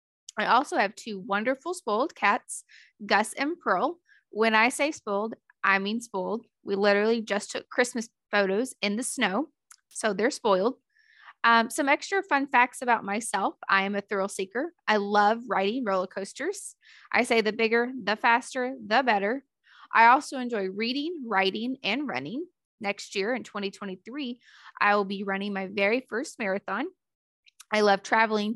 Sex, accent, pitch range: female, American, 200-250 Hz